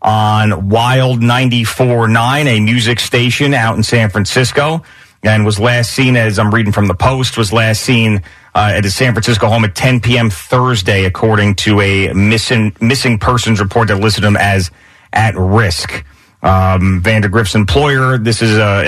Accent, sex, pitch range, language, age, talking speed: American, male, 100-120 Hz, English, 40-59, 170 wpm